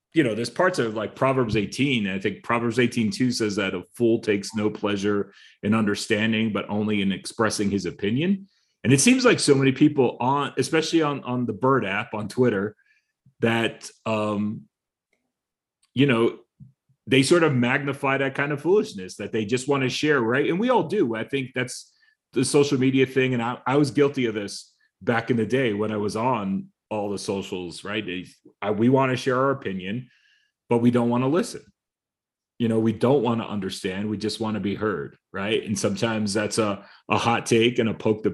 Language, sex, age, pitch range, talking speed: English, male, 30-49, 105-130 Hz, 205 wpm